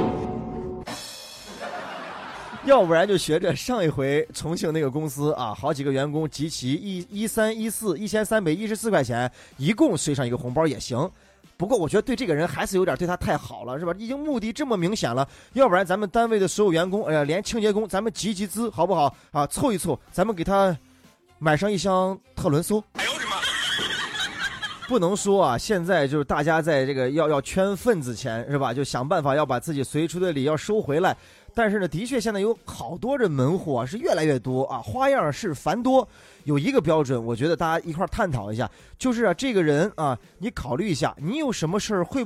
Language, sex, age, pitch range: Chinese, male, 20-39, 150-215 Hz